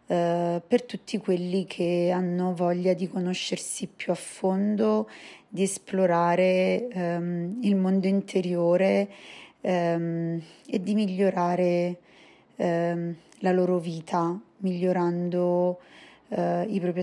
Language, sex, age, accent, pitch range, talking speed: Italian, female, 20-39, native, 175-190 Hz, 90 wpm